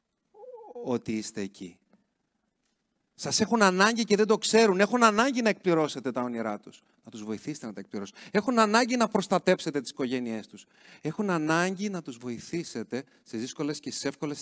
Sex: male